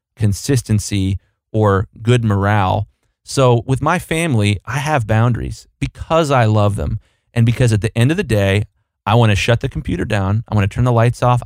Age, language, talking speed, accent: 30-49, English, 195 wpm, American